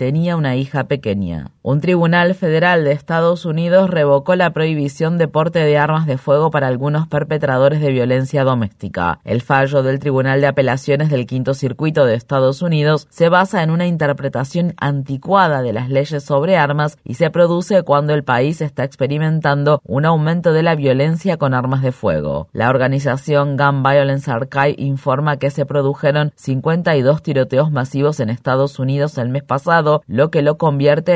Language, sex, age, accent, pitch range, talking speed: Spanish, female, 30-49, Argentinian, 135-155 Hz, 170 wpm